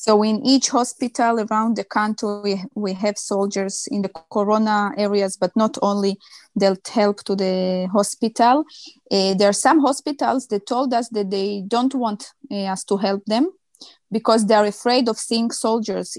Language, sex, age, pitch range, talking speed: Dutch, female, 20-39, 200-225 Hz, 175 wpm